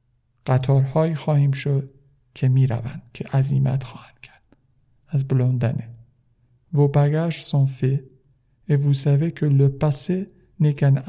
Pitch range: 125-145 Hz